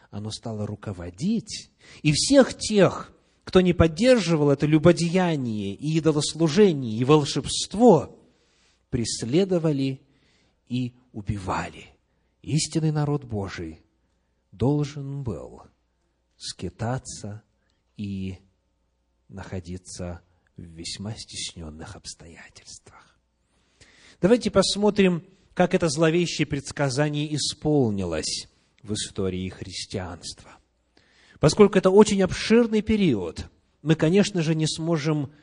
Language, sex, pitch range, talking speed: Russian, male, 95-155 Hz, 85 wpm